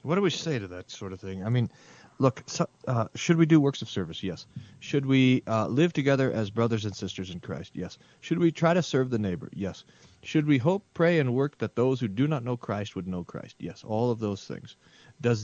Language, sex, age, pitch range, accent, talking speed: English, male, 40-59, 100-140 Hz, American, 245 wpm